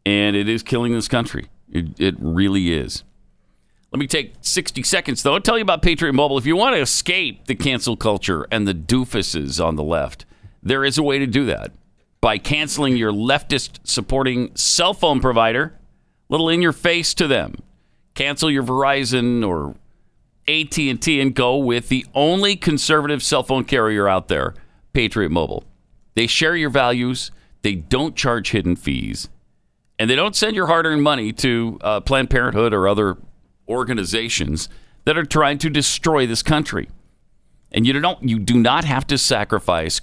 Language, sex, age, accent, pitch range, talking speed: English, male, 50-69, American, 105-145 Hz, 170 wpm